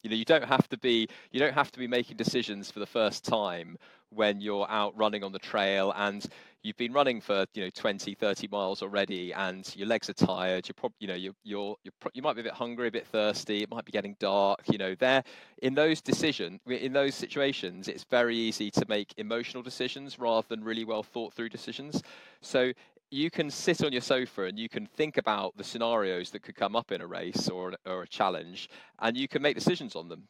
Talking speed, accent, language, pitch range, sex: 235 wpm, British, English, 105-130 Hz, male